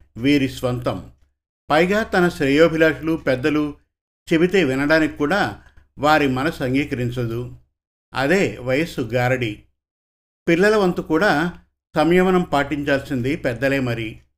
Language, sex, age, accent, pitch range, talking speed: Telugu, male, 50-69, native, 125-165 Hz, 80 wpm